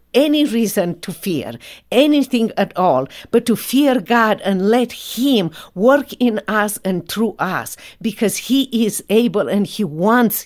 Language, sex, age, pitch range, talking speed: English, female, 50-69, 210-265 Hz, 155 wpm